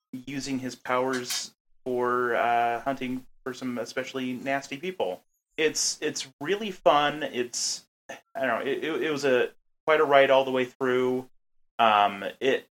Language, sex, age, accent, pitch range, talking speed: English, male, 30-49, American, 115-140 Hz, 150 wpm